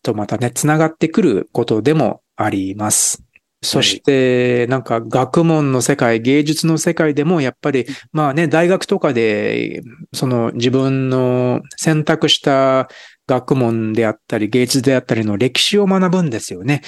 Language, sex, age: Japanese, male, 40-59